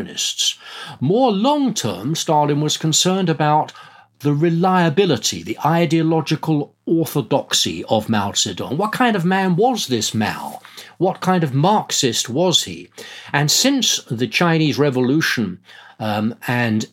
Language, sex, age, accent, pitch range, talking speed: English, male, 50-69, British, 110-160 Hz, 120 wpm